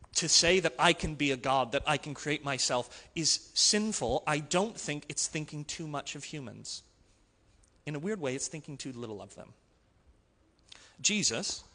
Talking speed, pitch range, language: 180 wpm, 135-185 Hz, English